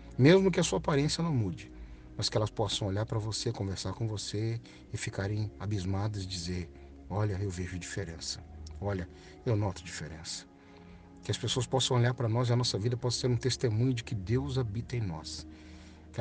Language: Portuguese